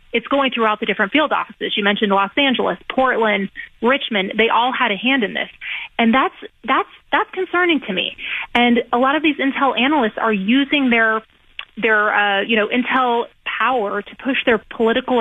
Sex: female